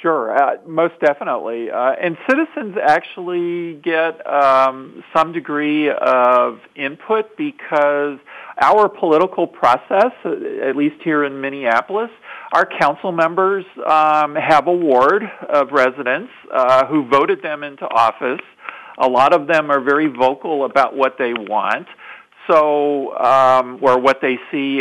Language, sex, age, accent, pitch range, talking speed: English, male, 50-69, American, 130-155 Hz, 135 wpm